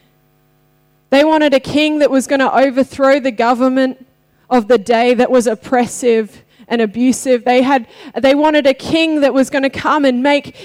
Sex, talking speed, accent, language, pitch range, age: female, 180 wpm, Australian, English, 225-275 Hz, 20-39